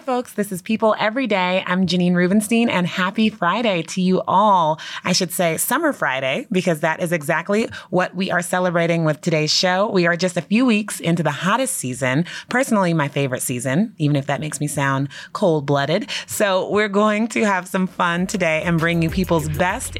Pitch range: 155-190 Hz